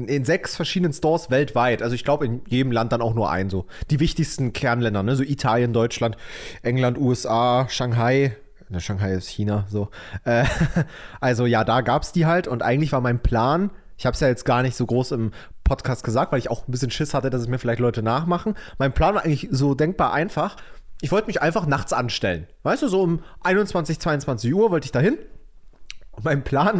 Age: 30-49